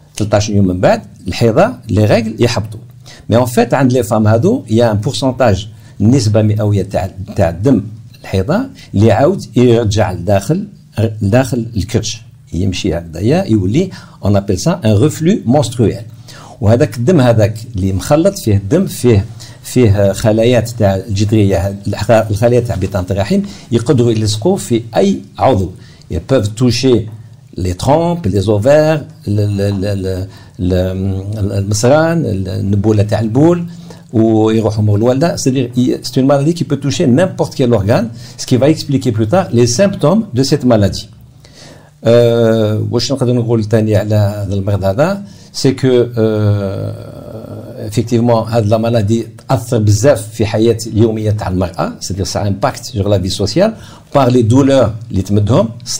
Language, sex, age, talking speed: French, male, 50-69, 115 wpm